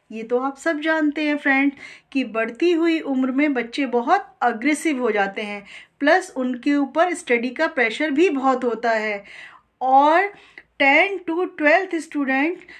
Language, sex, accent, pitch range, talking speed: Hindi, female, native, 245-320 Hz, 155 wpm